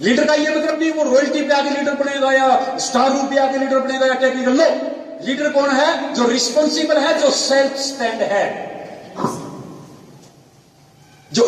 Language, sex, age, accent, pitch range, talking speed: Hindi, male, 40-59, native, 215-280 Hz, 150 wpm